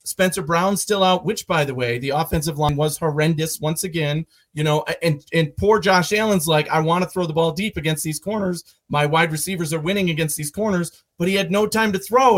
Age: 40-59